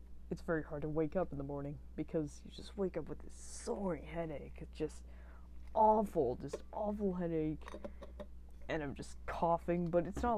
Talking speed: 180 wpm